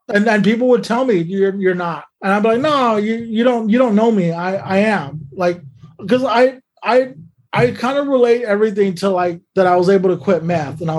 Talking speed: 240 wpm